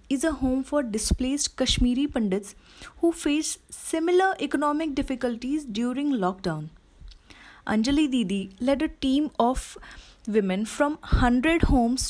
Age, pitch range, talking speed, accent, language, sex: 20-39, 200-280 Hz, 120 wpm, native, Hindi, female